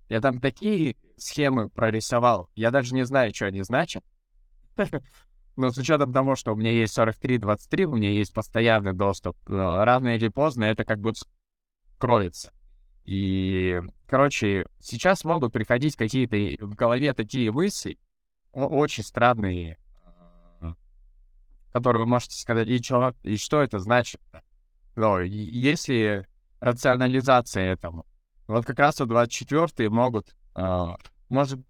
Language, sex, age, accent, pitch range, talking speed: Russian, male, 20-39, native, 90-125 Hz, 125 wpm